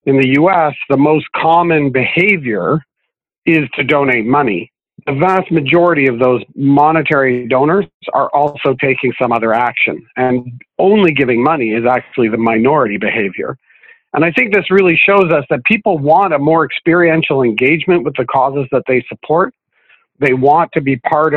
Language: English